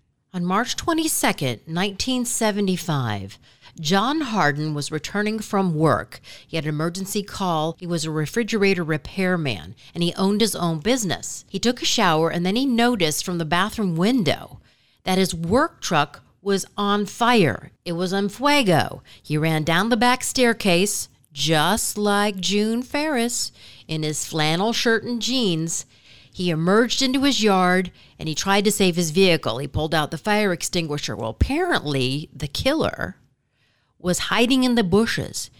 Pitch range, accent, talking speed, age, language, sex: 155-210 Hz, American, 155 wpm, 50-69, English, female